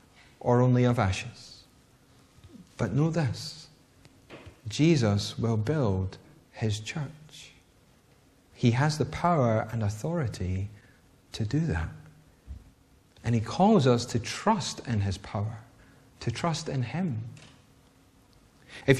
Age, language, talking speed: 30-49, English, 110 wpm